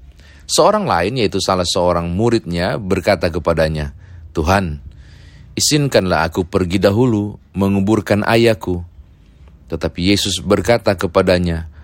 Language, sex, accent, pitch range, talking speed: Indonesian, male, native, 85-105 Hz, 95 wpm